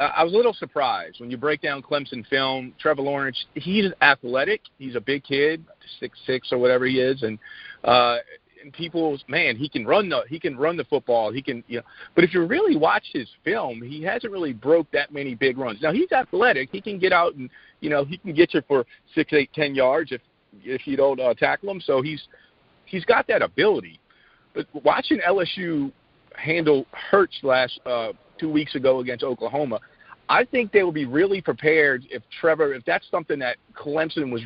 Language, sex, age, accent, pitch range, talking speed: English, male, 50-69, American, 130-165 Hz, 205 wpm